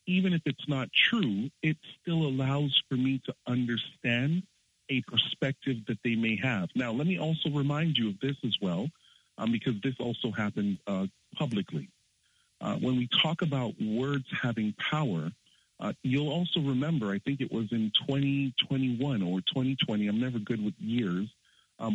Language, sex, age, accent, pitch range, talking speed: English, male, 40-59, American, 115-155 Hz, 165 wpm